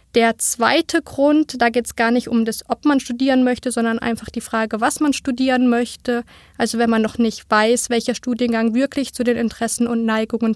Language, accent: German, German